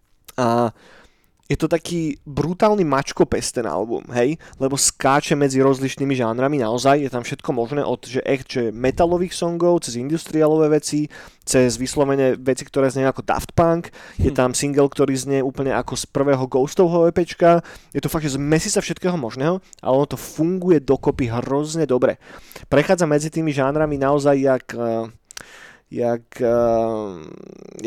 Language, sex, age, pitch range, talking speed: Slovak, male, 20-39, 125-150 Hz, 145 wpm